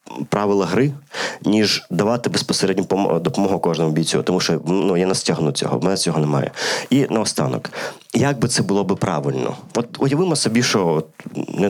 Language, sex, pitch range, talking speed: Ukrainian, male, 90-125 Hz, 160 wpm